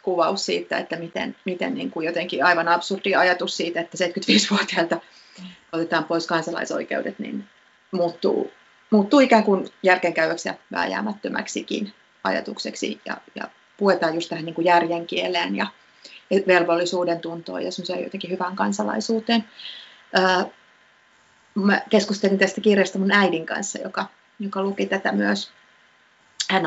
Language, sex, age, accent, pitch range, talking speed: Finnish, female, 30-49, native, 170-205 Hz, 120 wpm